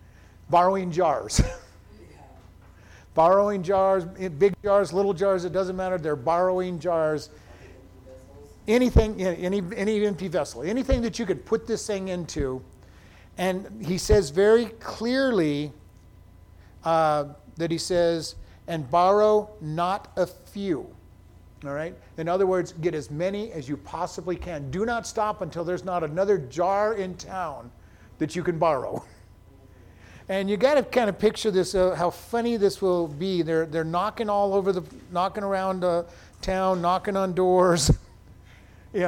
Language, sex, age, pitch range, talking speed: English, male, 50-69, 140-195 Hz, 145 wpm